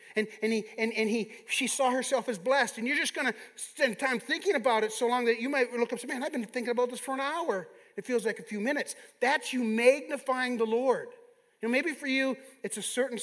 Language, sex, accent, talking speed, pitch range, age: English, male, American, 265 wpm, 210-275 Hz, 40-59